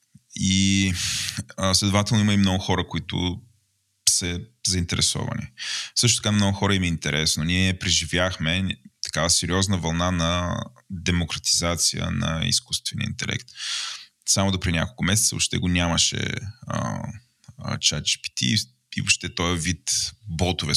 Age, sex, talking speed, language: 20-39, male, 120 wpm, Bulgarian